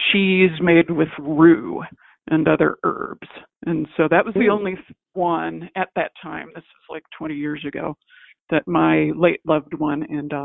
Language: English